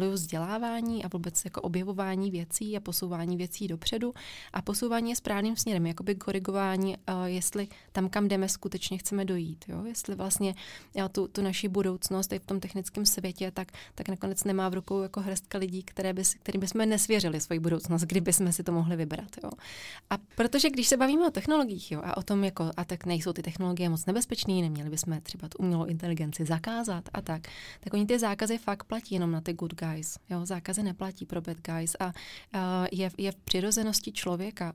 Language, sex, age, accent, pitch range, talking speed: Czech, female, 20-39, native, 180-205 Hz, 190 wpm